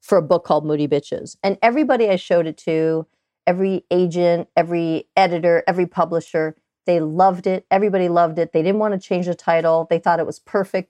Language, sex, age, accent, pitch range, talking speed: English, female, 40-59, American, 160-200 Hz, 200 wpm